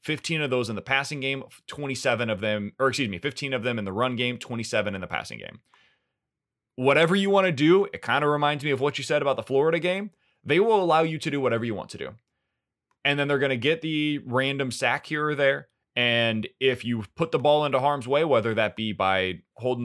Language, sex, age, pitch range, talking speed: English, male, 20-39, 115-155 Hz, 240 wpm